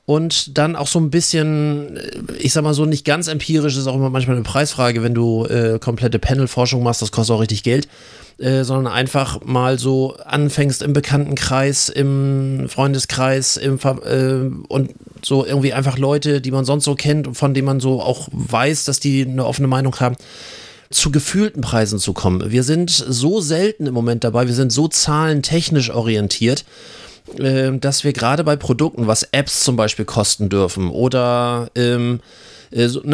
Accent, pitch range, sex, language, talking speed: German, 125-150 Hz, male, German, 175 wpm